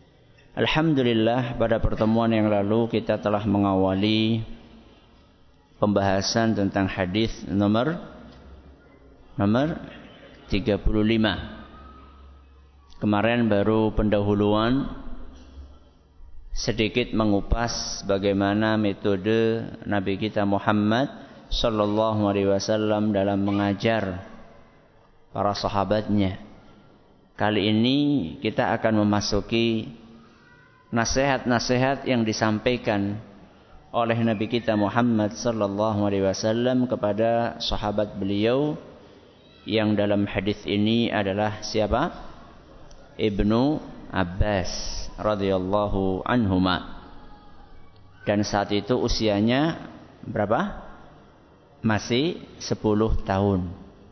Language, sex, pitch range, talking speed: Malay, male, 100-115 Hz, 75 wpm